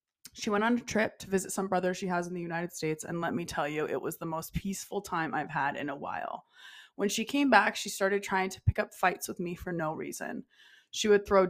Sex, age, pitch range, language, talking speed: female, 20-39, 165-205 Hz, English, 260 wpm